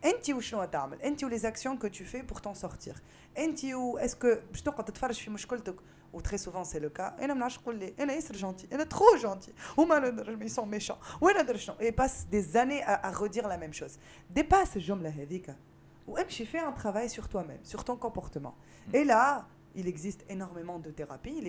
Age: 20-39